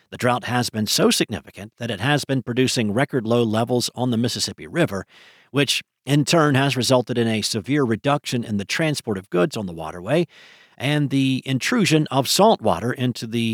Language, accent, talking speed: English, American, 190 wpm